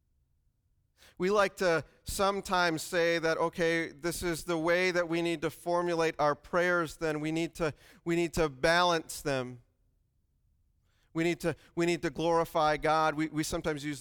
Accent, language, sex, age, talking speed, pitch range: American, English, male, 40-59, 165 wpm, 130-165 Hz